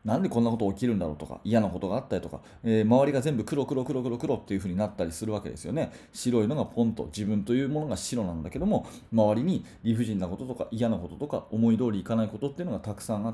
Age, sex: 30-49, male